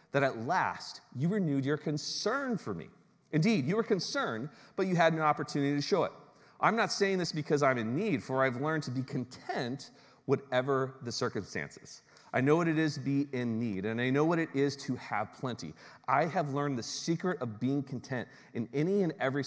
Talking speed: 210 wpm